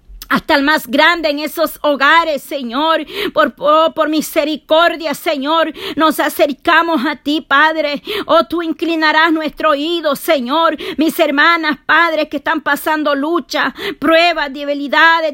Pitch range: 300-330 Hz